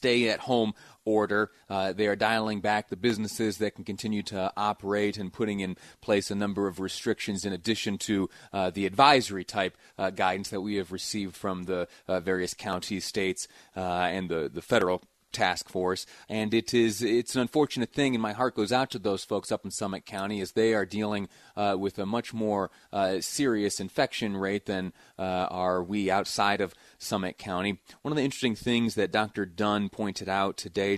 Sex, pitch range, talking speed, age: male, 95-110 Hz, 190 wpm, 30-49